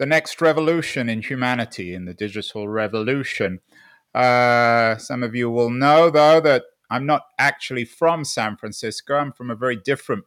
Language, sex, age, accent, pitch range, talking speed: English, male, 30-49, British, 125-170 Hz, 165 wpm